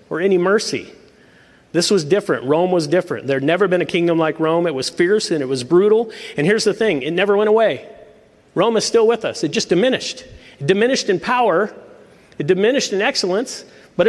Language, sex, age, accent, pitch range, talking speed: English, male, 40-59, American, 155-195 Hz, 210 wpm